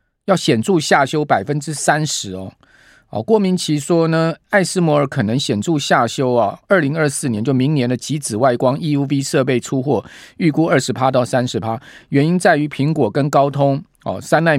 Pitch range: 120-155 Hz